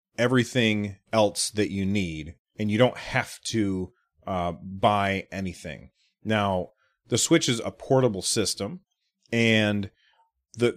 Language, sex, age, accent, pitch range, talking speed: English, male, 30-49, American, 100-120 Hz, 125 wpm